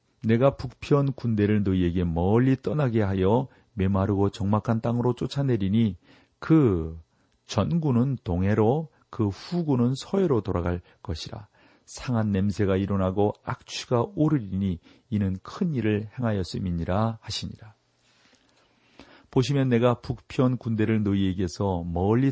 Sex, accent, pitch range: male, native, 95-120 Hz